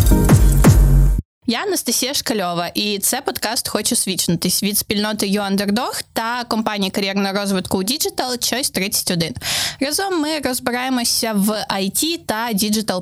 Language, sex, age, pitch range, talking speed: Ukrainian, female, 20-39, 205-250 Hz, 125 wpm